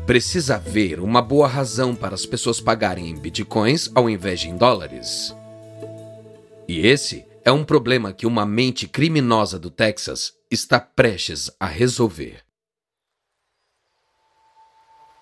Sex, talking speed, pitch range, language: male, 120 wpm, 100-155 Hz, Portuguese